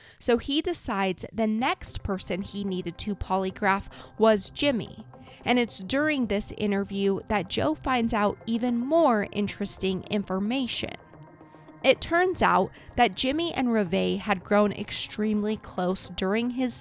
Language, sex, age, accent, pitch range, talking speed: English, female, 20-39, American, 190-230 Hz, 135 wpm